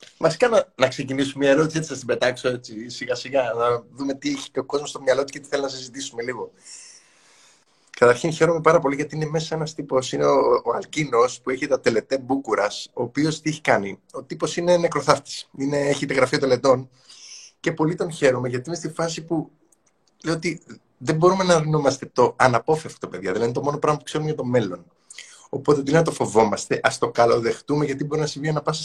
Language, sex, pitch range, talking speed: Greek, male, 135-170 Hz, 215 wpm